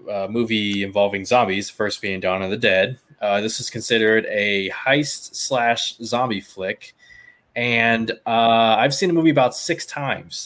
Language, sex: English, male